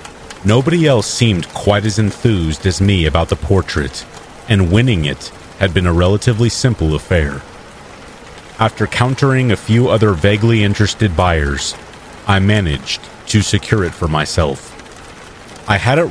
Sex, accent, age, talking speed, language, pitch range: male, American, 40-59, 140 wpm, English, 85-110 Hz